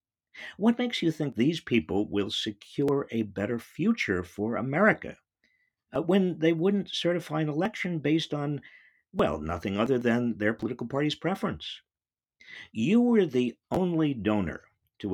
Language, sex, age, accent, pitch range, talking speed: English, male, 50-69, American, 100-165 Hz, 140 wpm